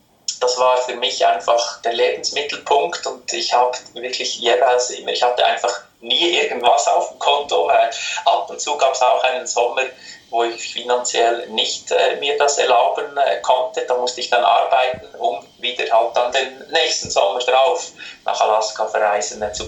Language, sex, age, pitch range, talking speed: German, male, 20-39, 115-130 Hz, 175 wpm